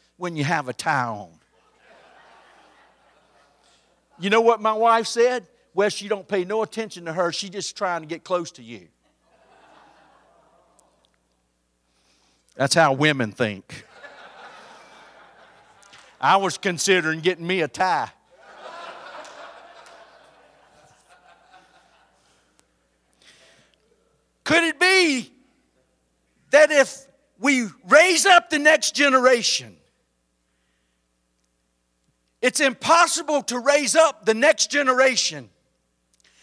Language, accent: English, American